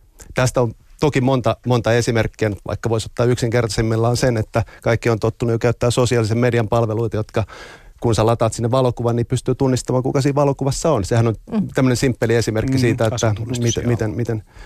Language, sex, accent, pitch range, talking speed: Finnish, male, native, 110-125 Hz, 170 wpm